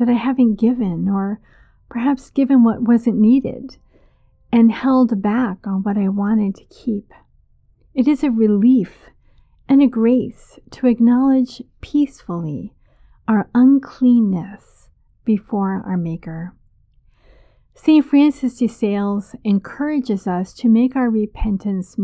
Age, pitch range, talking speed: 50-69, 200-250 Hz, 120 wpm